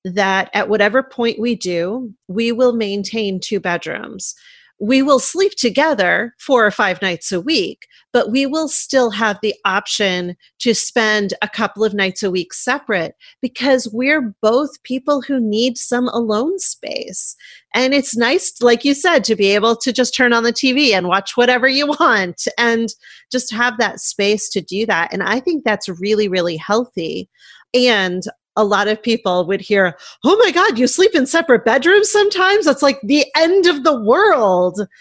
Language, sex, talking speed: English, female, 180 wpm